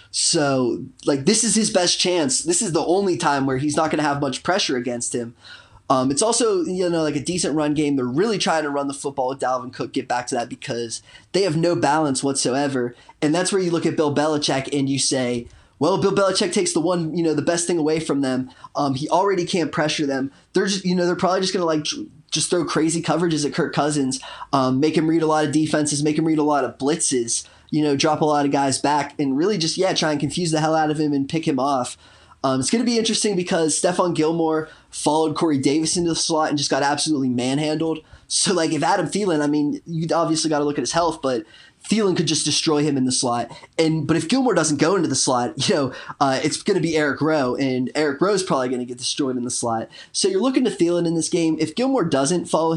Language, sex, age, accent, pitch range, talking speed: English, male, 20-39, American, 140-170 Hz, 255 wpm